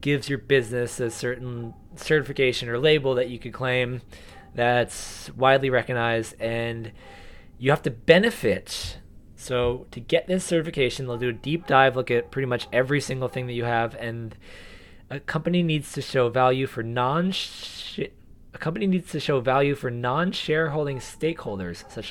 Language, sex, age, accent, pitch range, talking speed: English, male, 20-39, American, 115-150 Hz, 165 wpm